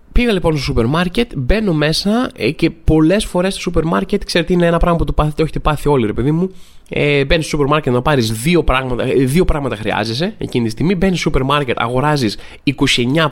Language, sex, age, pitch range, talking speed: Greek, male, 20-39, 125-185 Hz, 195 wpm